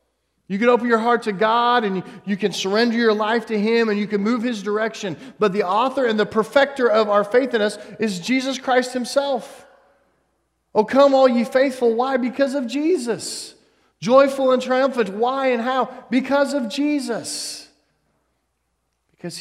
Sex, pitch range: male, 155-230 Hz